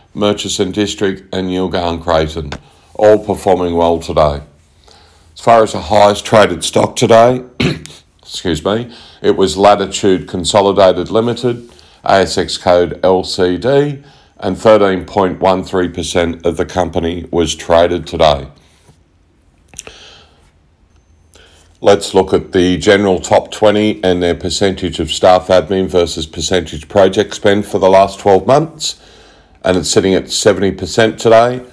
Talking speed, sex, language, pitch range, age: 120 wpm, male, English, 90-105 Hz, 50-69